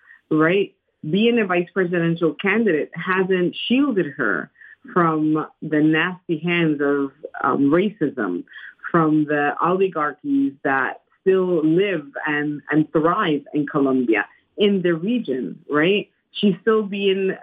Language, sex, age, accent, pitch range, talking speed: English, female, 30-49, American, 160-220 Hz, 115 wpm